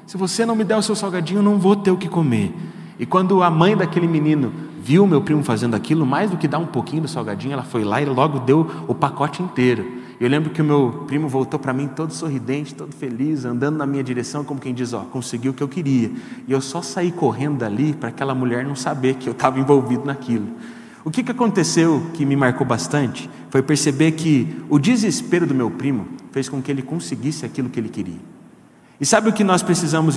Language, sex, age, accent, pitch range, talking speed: Portuguese, male, 30-49, Brazilian, 130-180 Hz, 230 wpm